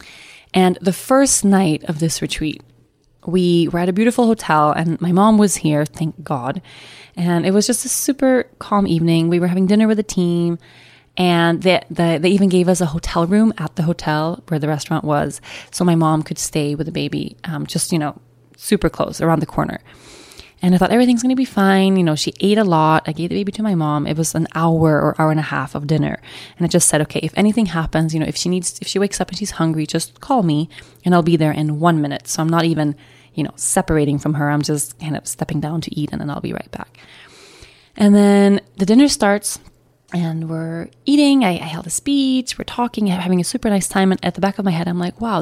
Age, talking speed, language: 20-39, 245 wpm, English